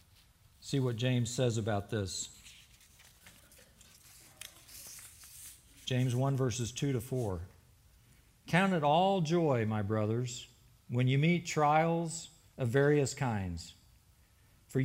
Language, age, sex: English, 50-69, male